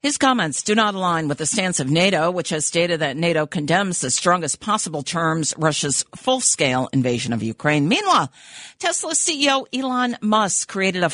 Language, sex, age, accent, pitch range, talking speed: English, female, 50-69, American, 155-195 Hz, 170 wpm